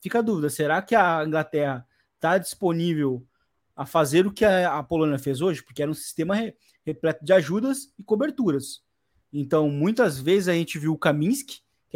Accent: Brazilian